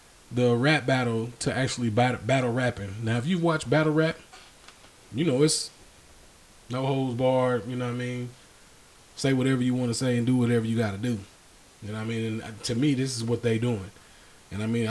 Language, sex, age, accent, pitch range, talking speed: English, male, 20-39, American, 115-130 Hz, 215 wpm